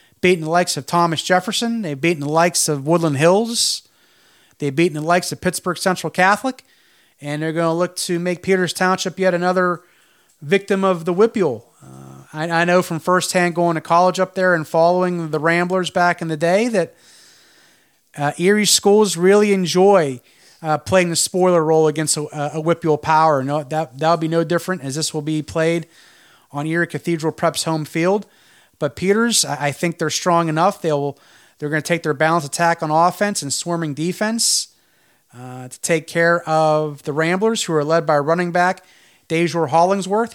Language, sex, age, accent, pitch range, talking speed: English, male, 30-49, American, 155-185 Hz, 185 wpm